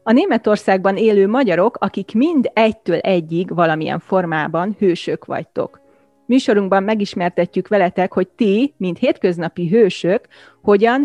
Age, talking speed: 30-49, 115 wpm